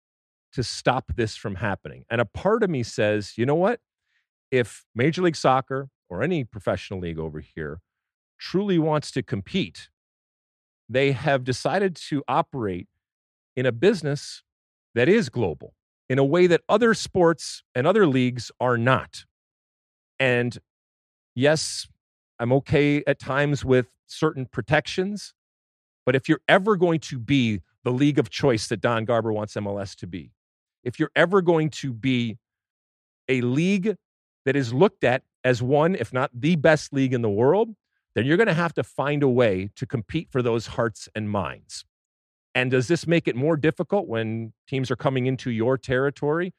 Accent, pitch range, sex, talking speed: American, 115-155 Hz, male, 165 wpm